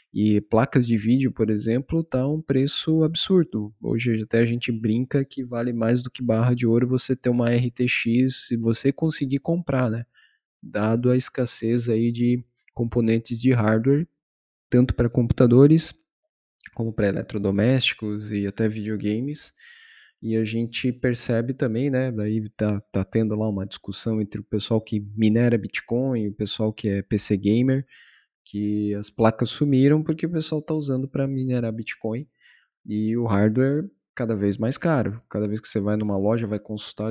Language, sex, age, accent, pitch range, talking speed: Portuguese, male, 20-39, Brazilian, 110-130 Hz, 165 wpm